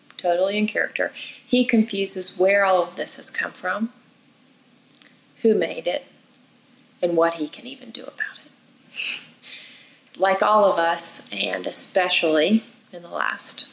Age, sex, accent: 30-49, female, American